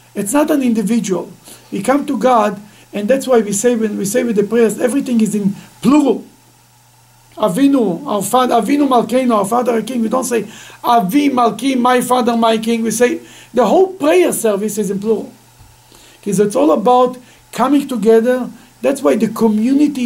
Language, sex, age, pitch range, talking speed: English, male, 50-69, 215-255 Hz, 175 wpm